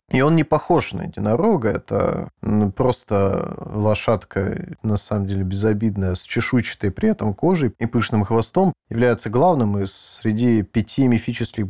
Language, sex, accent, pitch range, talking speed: Russian, male, native, 110-150 Hz, 140 wpm